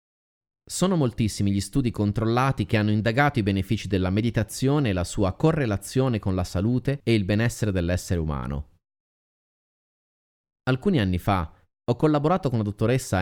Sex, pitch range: male, 90-120 Hz